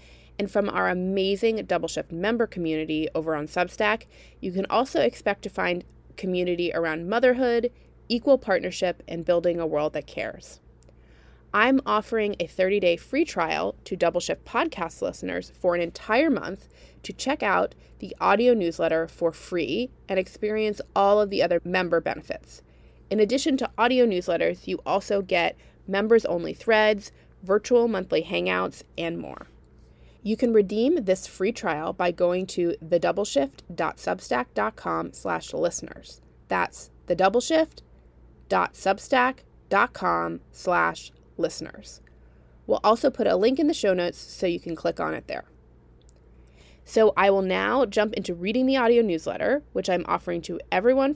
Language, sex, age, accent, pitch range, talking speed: English, female, 30-49, American, 155-215 Hz, 135 wpm